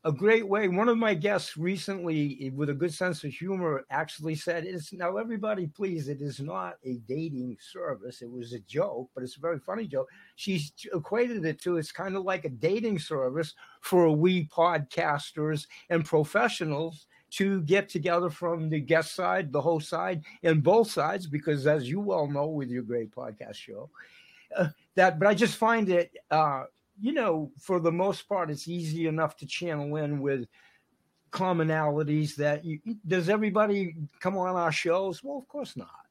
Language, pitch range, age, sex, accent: Chinese, 150-185 Hz, 50-69, male, American